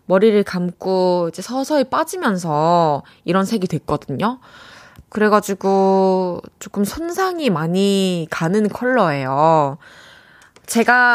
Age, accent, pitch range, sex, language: 20-39, native, 170-230 Hz, female, Korean